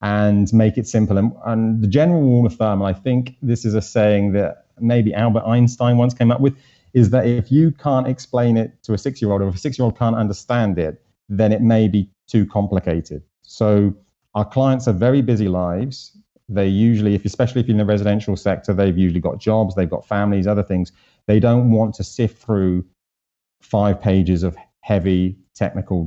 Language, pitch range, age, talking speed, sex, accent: English, 100-120 Hz, 30-49, 200 wpm, male, British